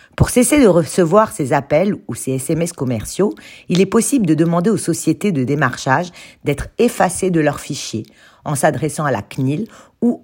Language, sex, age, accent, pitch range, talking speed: French, female, 50-69, French, 130-180 Hz, 175 wpm